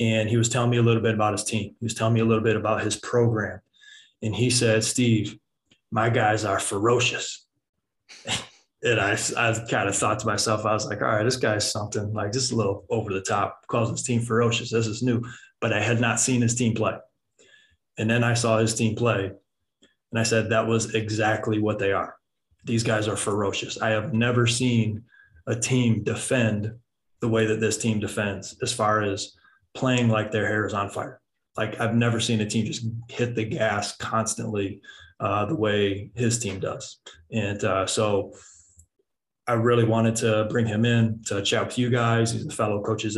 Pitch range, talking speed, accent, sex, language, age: 105-115 Hz, 205 wpm, American, male, English, 20-39